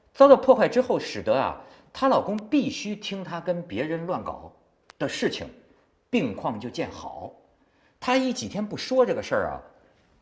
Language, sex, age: Chinese, male, 50-69